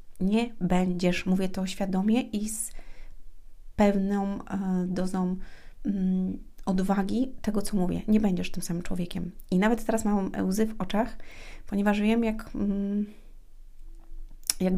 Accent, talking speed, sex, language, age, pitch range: native, 120 wpm, female, Polish, 30-49, 185-215 Hz